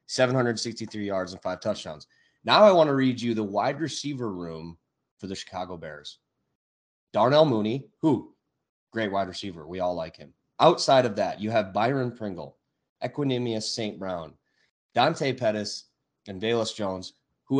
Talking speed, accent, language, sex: 155 wpm, American, English, male